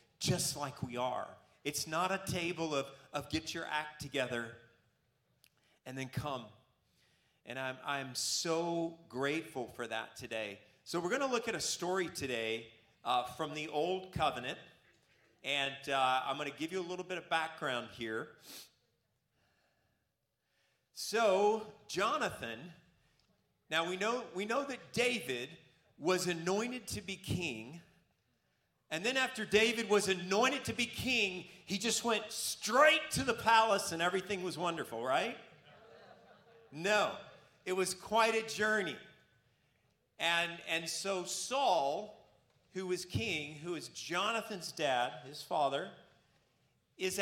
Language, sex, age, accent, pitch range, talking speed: English, male, 40-59, American, 135-195 Hz, 135 wpm